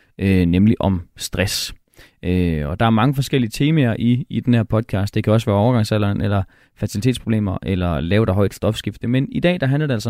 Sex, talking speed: male, 210 wpm